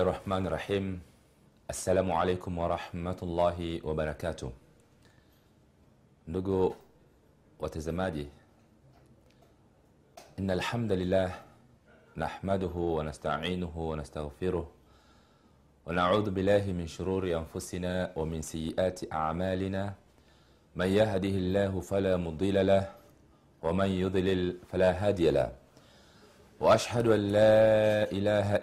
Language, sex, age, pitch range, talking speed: Swahili, male, 40-59, 85-100 Hz, 80 wpm